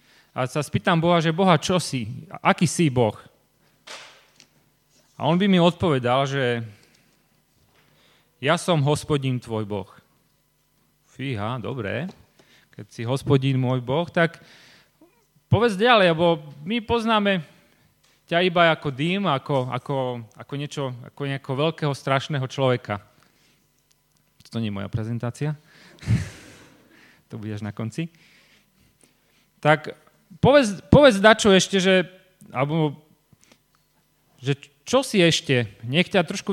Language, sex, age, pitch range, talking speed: Slovak, male, 30-49, 125-175 Hz, 115 wpm